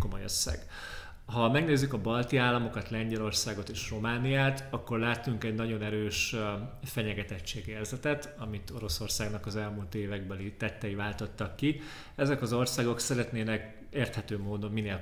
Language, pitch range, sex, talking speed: Hungarian, 100-115 Hz, male, 115 wpm